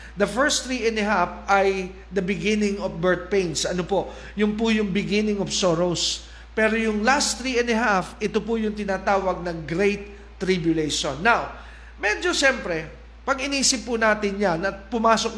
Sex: male